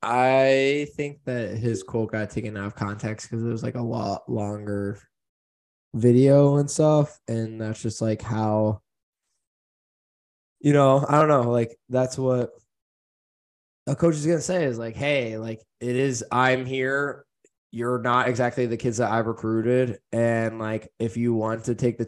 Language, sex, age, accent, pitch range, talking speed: English, male, 20-39, American, 110-130 Hz, 170 wpm